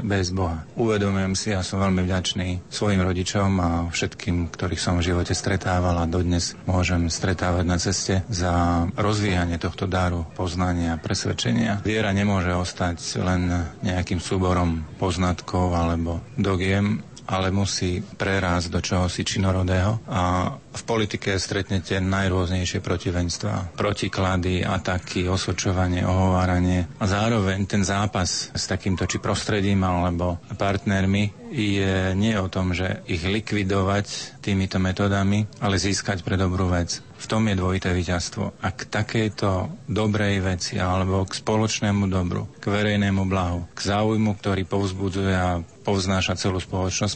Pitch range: 90-105 Hz